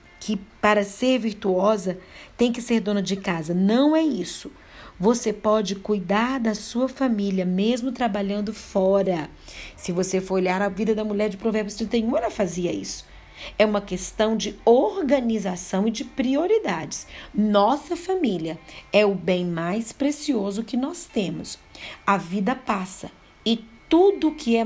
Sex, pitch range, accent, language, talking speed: female, 185-235 Hz, Brazilian, Portuguese, 150 wpm